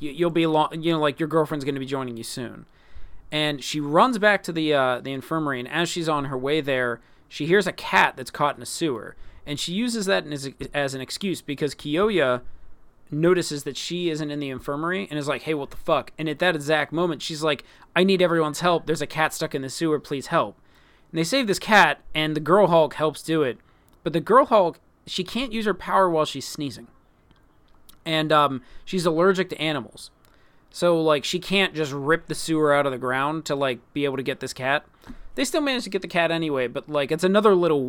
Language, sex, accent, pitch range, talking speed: English, male, American, 135-170 Hz, 230 wpm